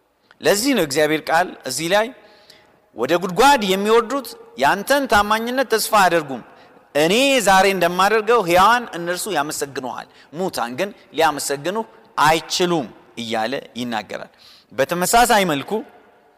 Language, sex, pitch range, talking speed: Amharic, male, 165-225 Hz, 100 wpm